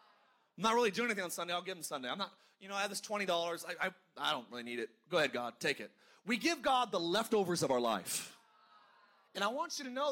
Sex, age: male, 30-49